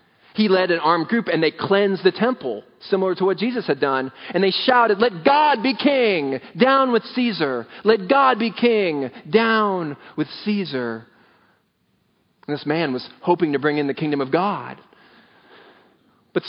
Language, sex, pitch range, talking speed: English, male, 145-215 Hz, 165 wpm